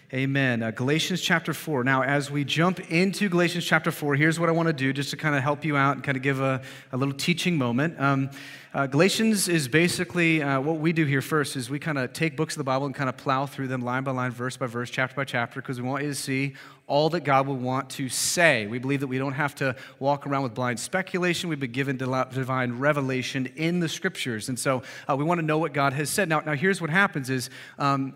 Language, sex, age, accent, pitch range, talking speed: English, male, 30-49, American, 135-160 Hz, 260 wpm